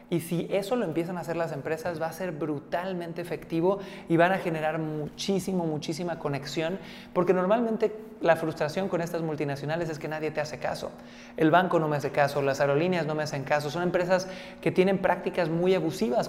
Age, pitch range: 30-49, 155-190 Hz